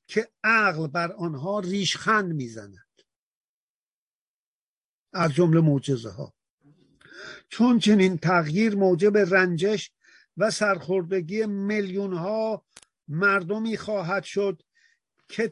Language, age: Persian, 50-69